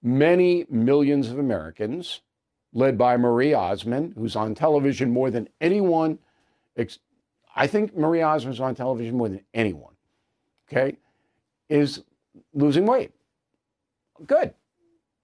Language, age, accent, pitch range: English, 50-69, American, 125-175 Hz